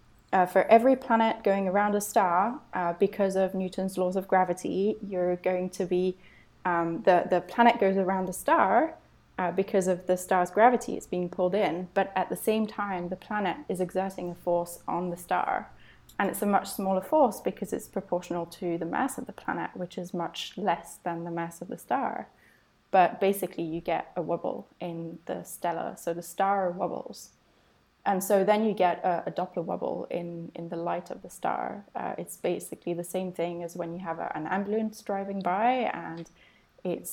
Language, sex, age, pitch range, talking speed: English, female, 20-39, 175-205 Hz, 195 wpm